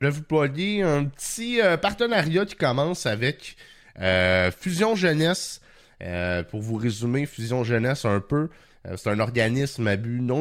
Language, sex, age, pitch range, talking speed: French, male, 30-49, 95-125 Hz, 160 wpm